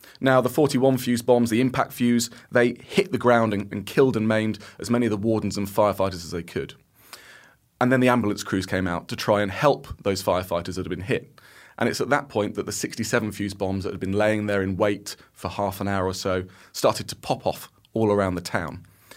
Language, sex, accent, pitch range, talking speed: English, male, British, 95-120 Hz, 235 wpm